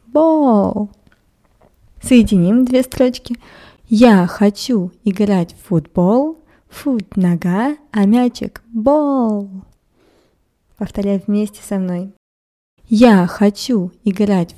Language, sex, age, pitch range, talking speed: Russian, female, 20-39, 190-255 Hz, 95 wpm